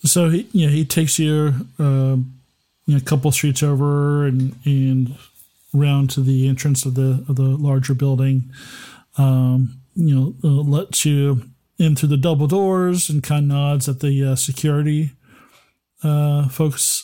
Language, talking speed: English, 160 wpm